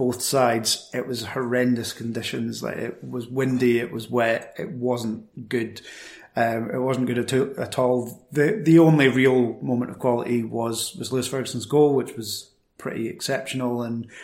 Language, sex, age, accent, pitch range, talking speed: English, male, 30-49, British, 120-135 Hz, 165 wpm